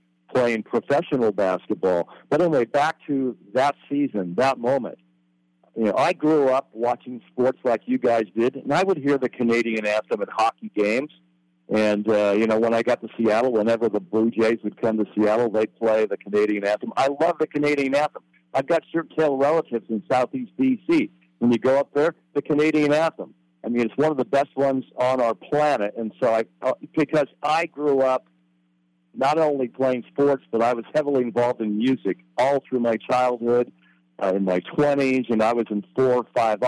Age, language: 60-79, English